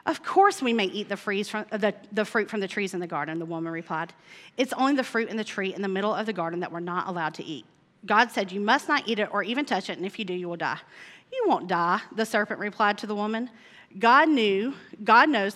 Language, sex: English, female